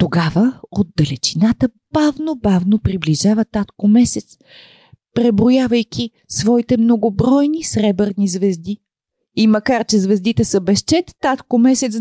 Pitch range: 155-245 Hz